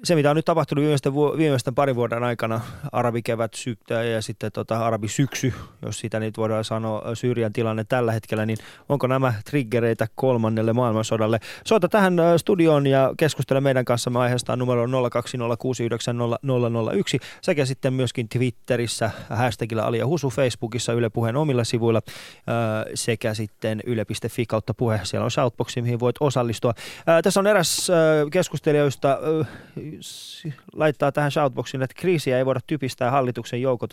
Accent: native